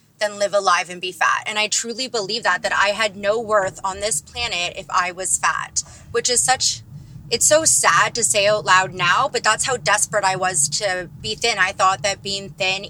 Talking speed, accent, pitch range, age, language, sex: 225 wpm, American, 190-230 Hz, 20-39, English, female